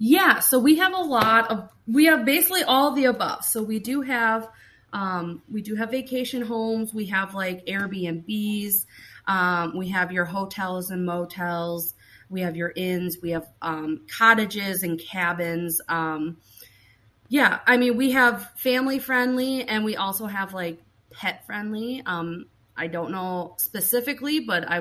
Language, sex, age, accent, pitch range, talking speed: English, female, 30-49, American, 170-225 Hz, 160 wpm